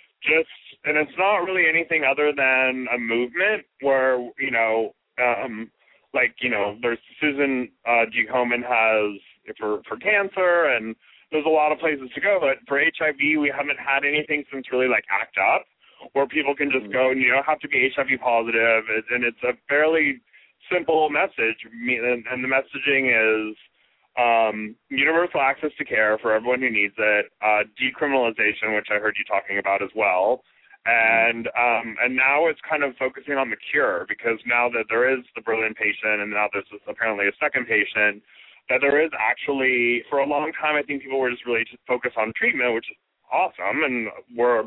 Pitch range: 110-145 Hz